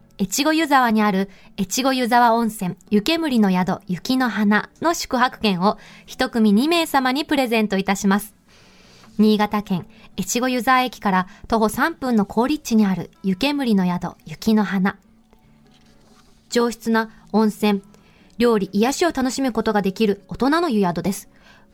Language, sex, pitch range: Japanese, female, 200-255 Hz